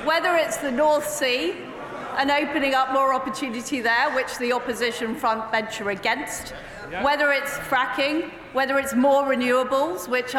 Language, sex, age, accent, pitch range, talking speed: English, female, 40-59, British, 235-300 Hz, 160 wpm